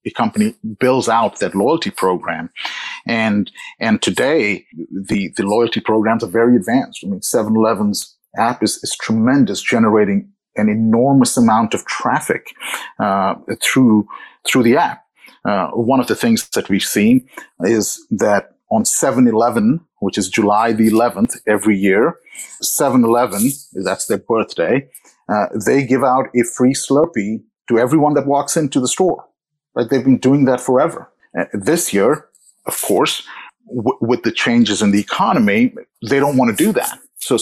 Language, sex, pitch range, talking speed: English, male, 115-175 Hz, 155 wpm